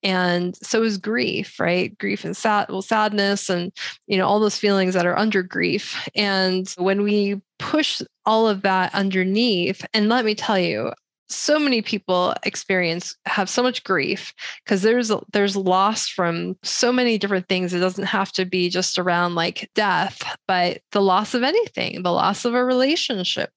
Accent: American